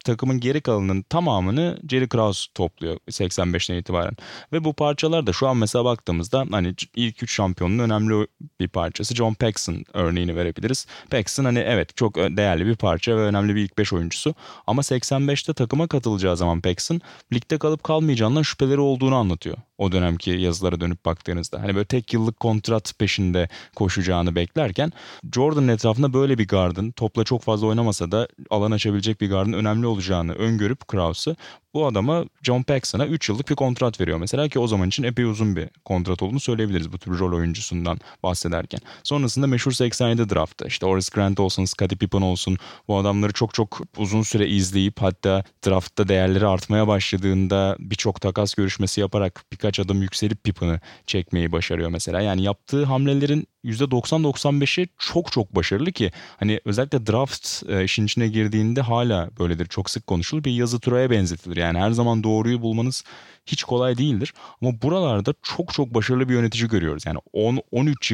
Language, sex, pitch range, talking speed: Turkish, male, 95-125 Hz, 160 wpm